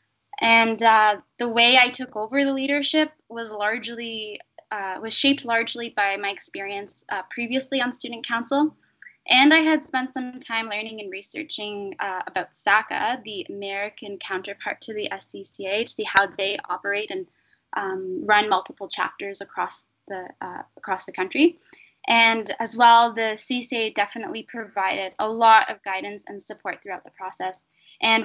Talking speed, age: 155 wpm, 10-29